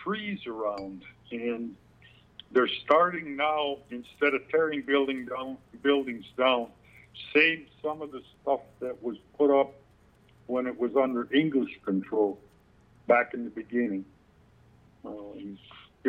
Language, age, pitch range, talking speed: English, 60-79, 105-130 Hz, 125 wpm